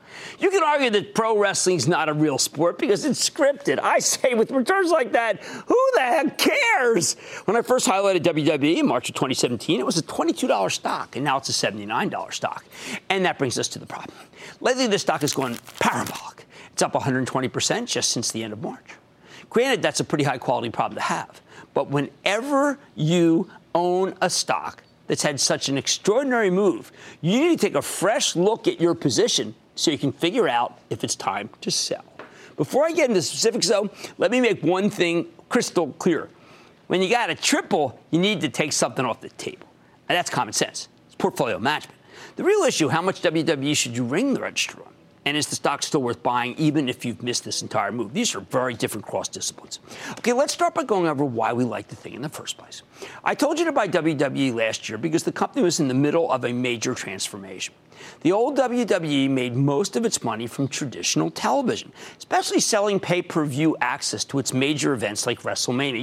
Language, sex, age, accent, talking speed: English, male, 50-69, American, 205 wpm